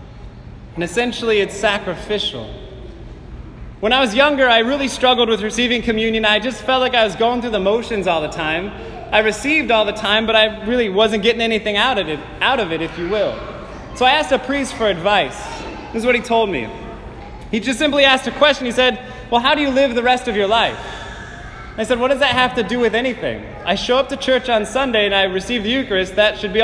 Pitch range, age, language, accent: 205-245 Hz, 20-39, English, American